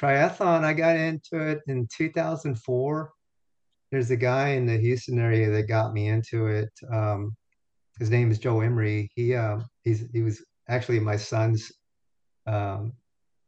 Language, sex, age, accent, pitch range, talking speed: English, male, 30-49, American, 110-130 Hz, 150 wpm